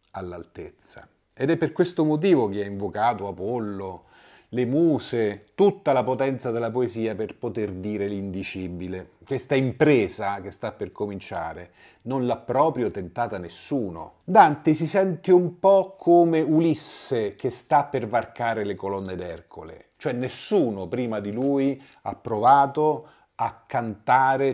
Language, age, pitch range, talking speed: Italian, 40-59, 105-145 Hz, 135 wpm